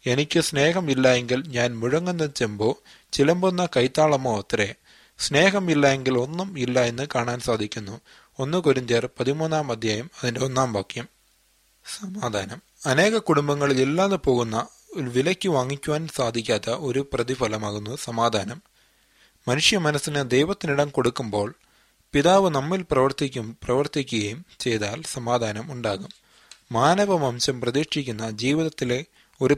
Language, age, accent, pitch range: Malayalam, 30-49, native, 120-155 Hz